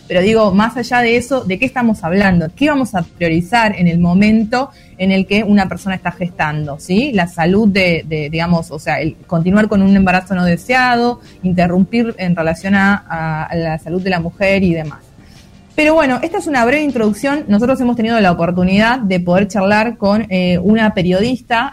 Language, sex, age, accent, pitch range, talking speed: Spanish, female, 20-39, Argentinian, 175-235 Hz, 195 wpm